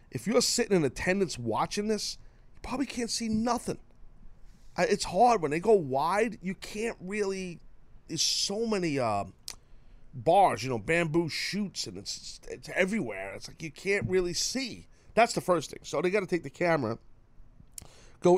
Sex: male